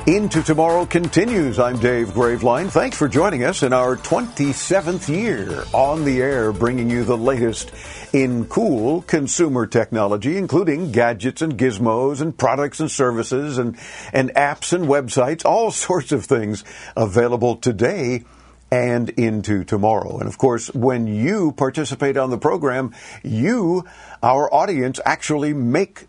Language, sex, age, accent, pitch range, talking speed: English, male, 50-69, American, 115-145 Hz, 140 wpm